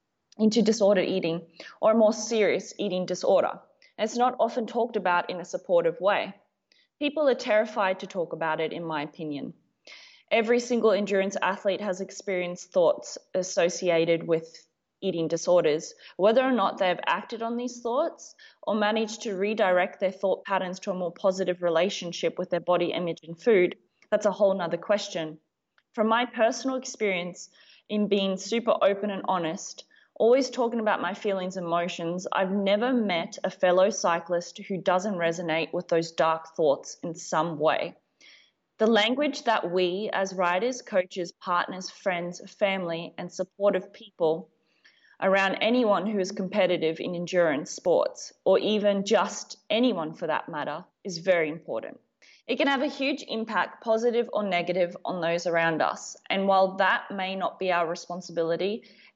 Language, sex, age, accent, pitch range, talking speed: English, female, 20-39, Australian, 175-215 Hz, 160 wpm